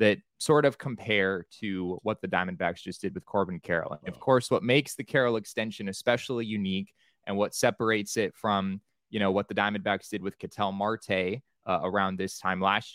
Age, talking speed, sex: 20-39, 195 wpm, male